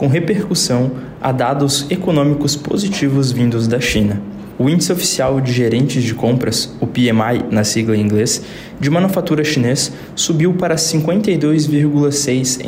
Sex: male